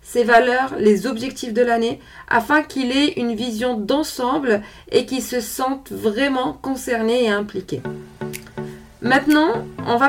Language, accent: French, French